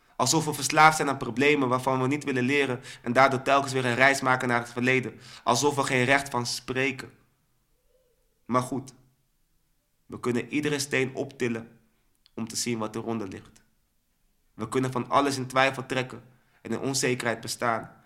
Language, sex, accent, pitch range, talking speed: Dutch, male, Dutch, 120-135 Hz, 170 wpm